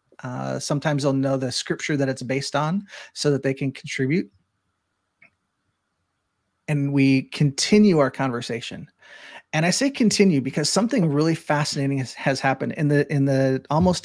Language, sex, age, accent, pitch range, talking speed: English, male, 30-49, American, 135-160 Hz, 155 wpm